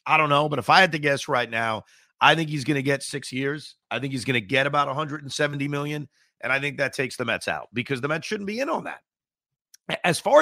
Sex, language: male, English